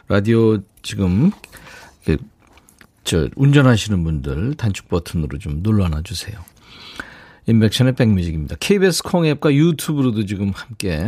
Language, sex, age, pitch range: Korean, male, 40-59, 100-135 Hz